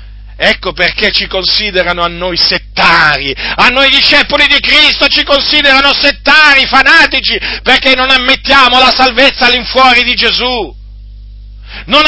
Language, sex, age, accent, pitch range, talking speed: Italian, male, 50-69, native, 170-285 Hz, 125 wpm